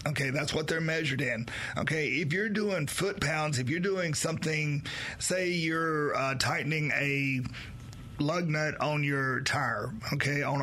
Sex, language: male, English